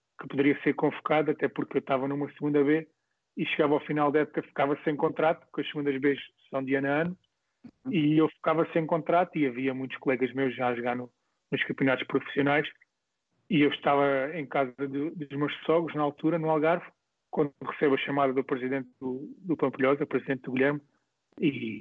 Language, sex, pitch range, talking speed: Portuguese, male, 135-150 Hz, 195 wpm